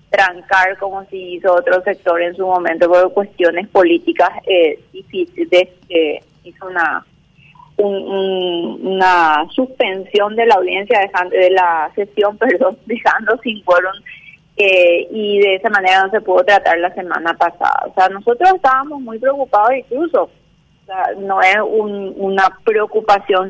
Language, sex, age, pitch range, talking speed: Spanish, female, 30-49, 185-255 Hz, 135 wpm